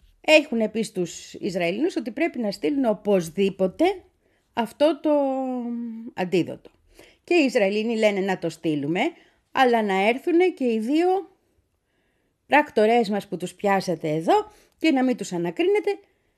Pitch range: 185-290 Hz